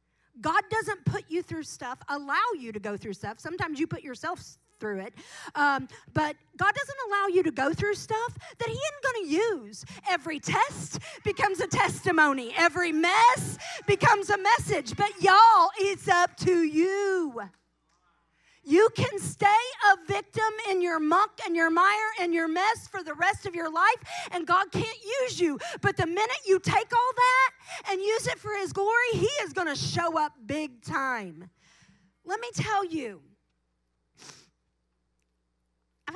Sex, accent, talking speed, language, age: female, American, 170 wpm, English, 40-59